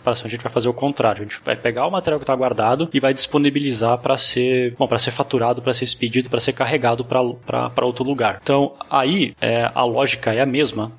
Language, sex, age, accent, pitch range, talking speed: Portuguese, male, 20-39, Brazilian, 115-135 Hz, 225 wpm